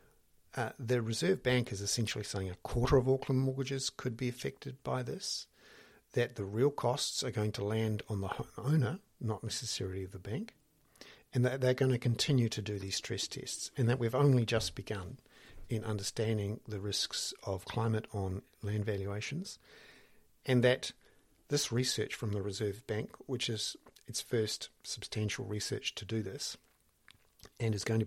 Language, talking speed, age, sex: English, 170 wpm, 50-69, male